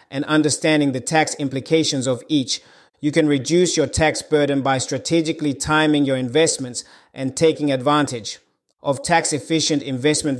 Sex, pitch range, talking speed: male, 135-155 Hz, 140 wpm